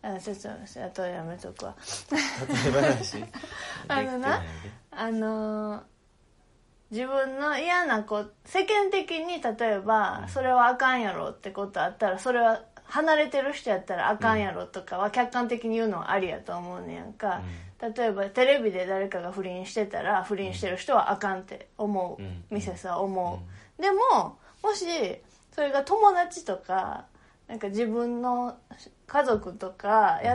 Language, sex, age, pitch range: Japanese, female, 20-39, 190-265 Hz